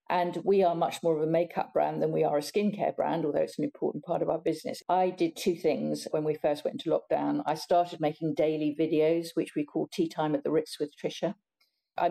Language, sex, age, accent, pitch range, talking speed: English, female, 50-69, British, 155-175 Hz, 245 wpm